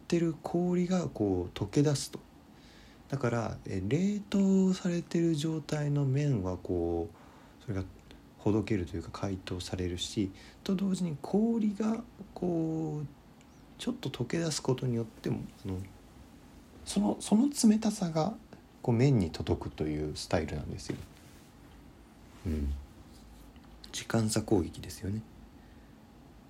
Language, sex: Japanese, male